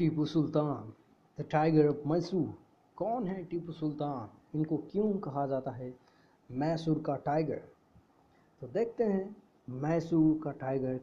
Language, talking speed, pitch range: Hindi, 130 wpm, 145-175 Hz